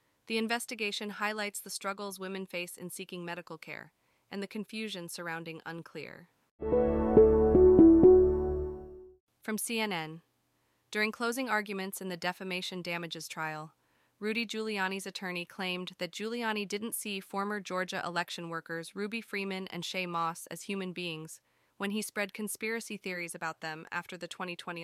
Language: English